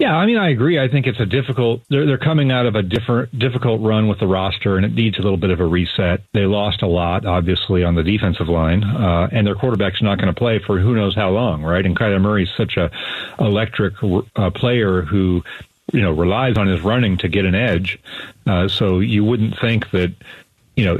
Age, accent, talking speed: 40-59, American, 235 wpm